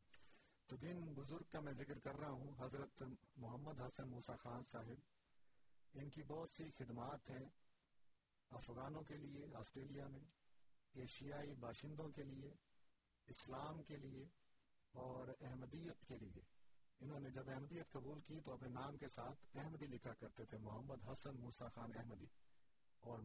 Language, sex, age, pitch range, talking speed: Urdu, male, 50-69, 115-140 Hz, 150 wpm